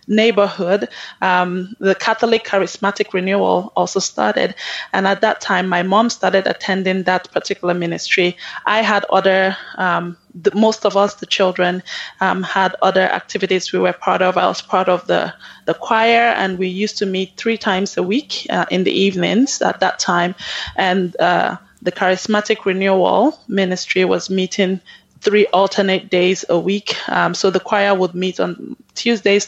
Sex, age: female, 20-39